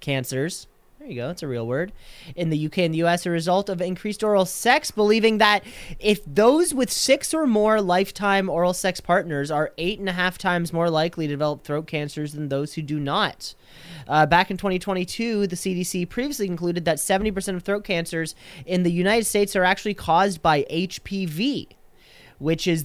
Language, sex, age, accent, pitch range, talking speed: English, male, 30-49, American, 155-215 Hz, 195 wpm